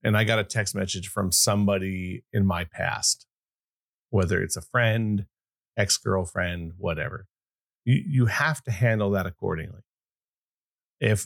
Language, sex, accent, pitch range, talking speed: English, male, American, 95-125 Hz, 135 wpm